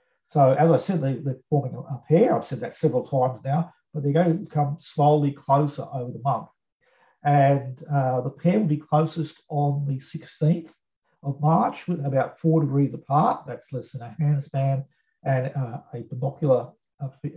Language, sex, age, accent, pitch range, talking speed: English, male, 40-59, Australian, 140-160 Hz, 185 wpm